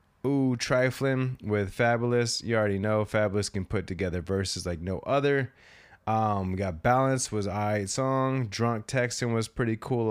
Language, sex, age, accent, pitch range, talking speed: English, male, 20-39, American, 95-130 Hz, 160 wpm